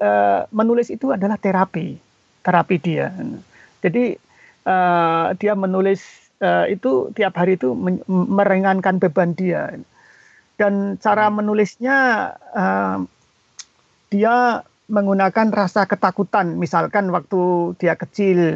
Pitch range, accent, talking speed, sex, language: 180-235 Hz, native, 85 wpm, male, Indonesian